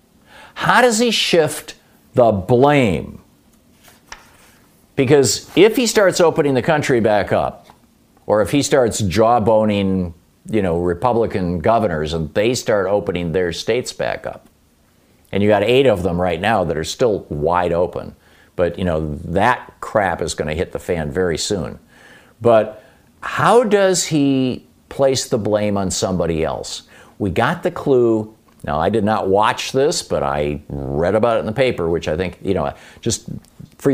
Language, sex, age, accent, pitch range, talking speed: English, male, 50-69, American, 95-145 Hz, 165 wpm